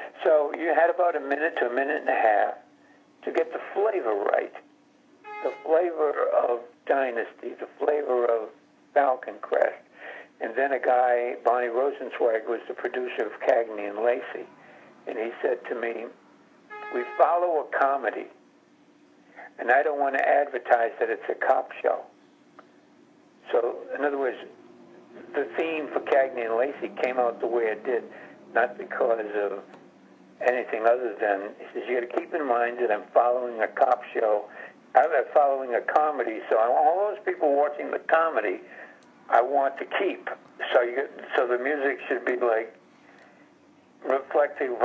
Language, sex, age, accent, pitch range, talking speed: English, male, 60-79, American, 120-175 Hz, 160 wpm